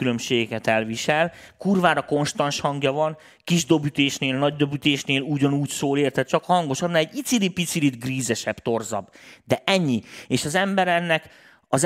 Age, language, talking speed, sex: 30-49, Hungarian, 135 wpm, male